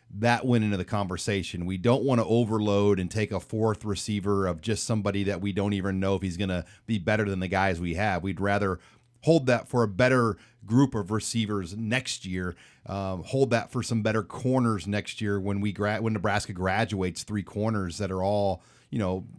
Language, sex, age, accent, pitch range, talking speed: English, male, 40-59, American, 95-115 Hz, 210 wpm